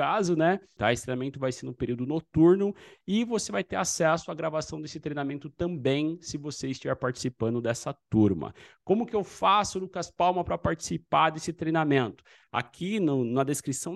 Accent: Brazilian